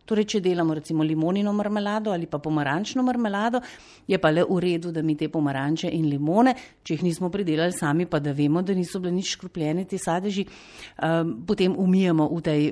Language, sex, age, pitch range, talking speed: Italian, female, 50-69, 155-230 Hz, 190 wpm